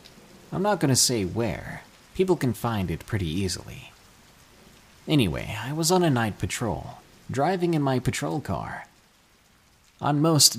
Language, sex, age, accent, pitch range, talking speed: English, male, 30-49, American, 95-145 Hz, 145 wpm